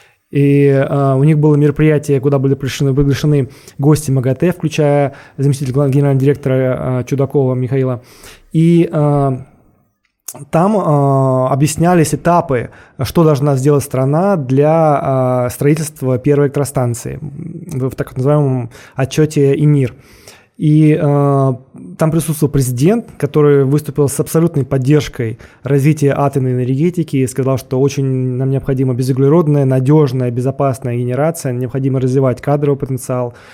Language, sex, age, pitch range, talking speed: Russian, male, 20-39, 130-150 Hz, 105 wpm